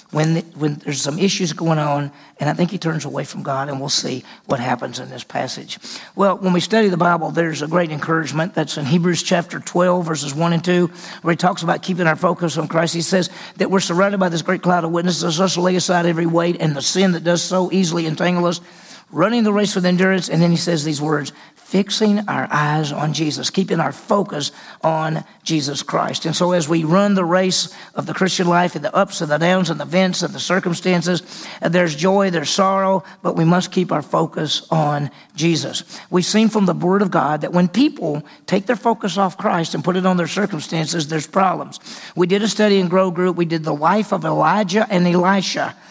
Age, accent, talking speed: 40-59, American, 225 wpm